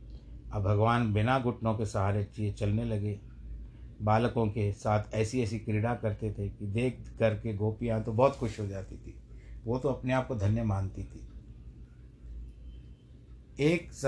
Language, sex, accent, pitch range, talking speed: Hindi, male, native, 105-145 Hz, 160 wpm